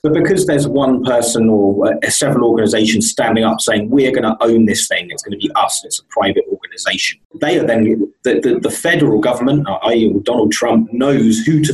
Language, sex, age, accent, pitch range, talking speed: English, male, 30-49, British, 115-190 Hz, 200 wpm